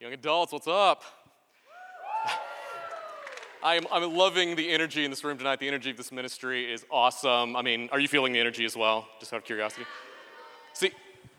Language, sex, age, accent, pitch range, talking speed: English, male, 30-49, American, 115-155 Hz, 175 wpm